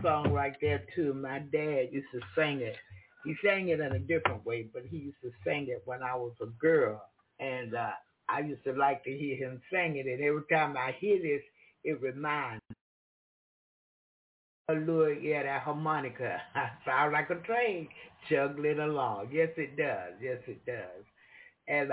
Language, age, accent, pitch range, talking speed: English, 60-79, American, 130-165 Hz, 180 wpm